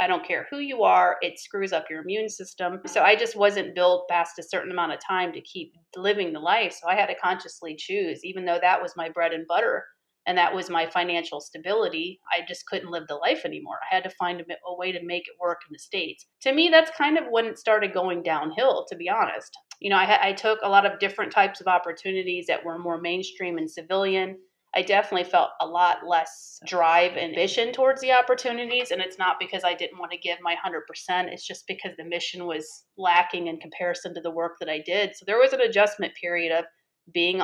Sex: female